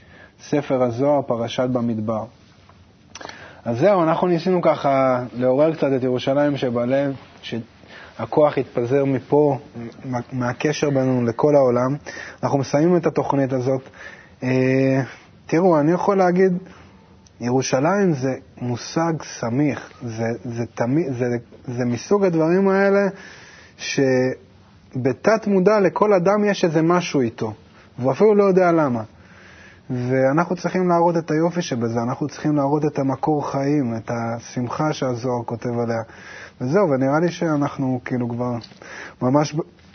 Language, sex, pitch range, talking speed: Hebrew, male, 120-155 Hz, 120 wpm